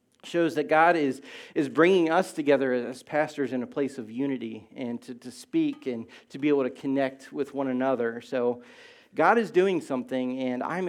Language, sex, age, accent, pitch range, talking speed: English, male, 40-59, American, 145-195 Hz, 195 wpm